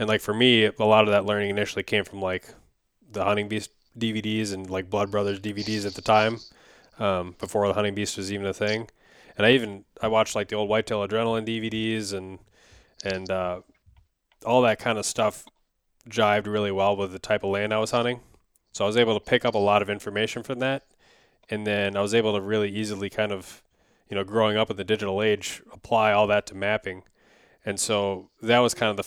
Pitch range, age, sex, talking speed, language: 100-110 Hz, 20-39, male, 220 wpm, English